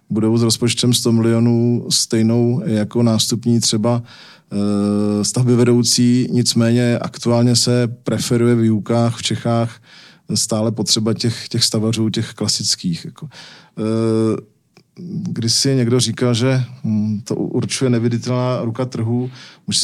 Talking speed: 110 wpm